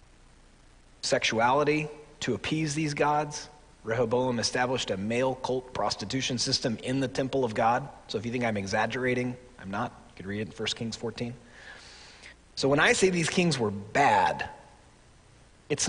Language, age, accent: English, 30-49, American